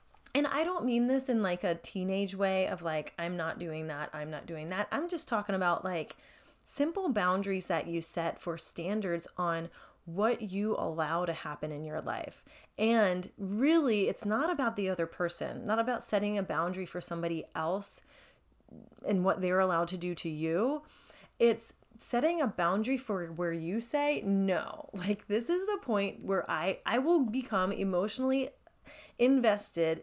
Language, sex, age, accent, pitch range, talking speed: English, female, 30-49, American, 170-220 Hz, 170 wpm